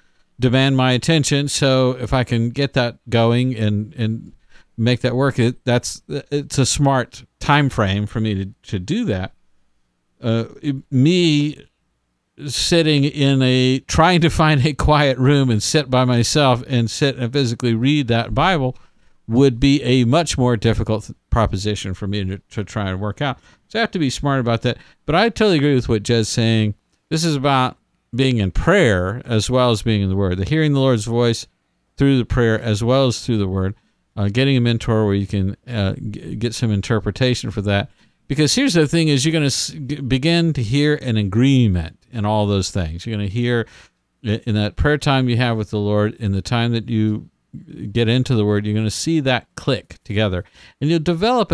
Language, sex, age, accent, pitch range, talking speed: English, male, 50-69, American, 105-140 Hz, 200 wpm